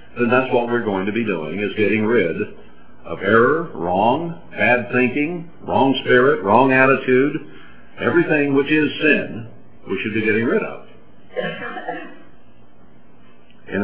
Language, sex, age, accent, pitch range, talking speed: English, male, 60-79, American, 90-135 Hz, 135 wpm